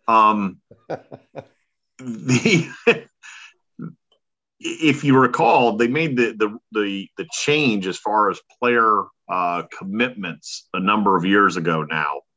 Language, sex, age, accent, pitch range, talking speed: English, male, 40-59, American, 100-145 Hz, 115 wpm